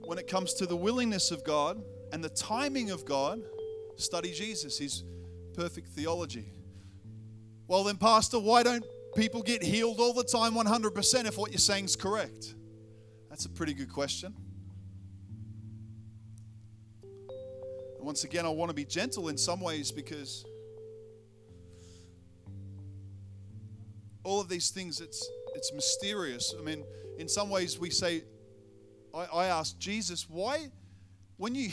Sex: male